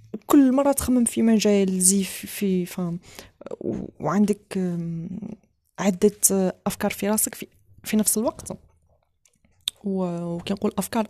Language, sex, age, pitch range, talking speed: Arabic, female, 20-39, 180-225 Hz, 110 wpm